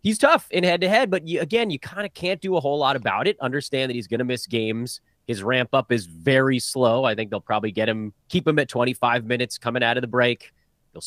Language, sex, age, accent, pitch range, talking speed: English, male, 30-49, American, 115-170 Hz, 245 wpm